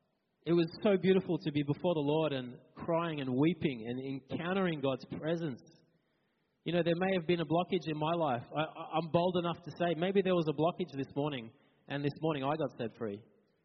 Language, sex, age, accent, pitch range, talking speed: English, male, 20-39, Australian, 145-180 Hz, 205 wpm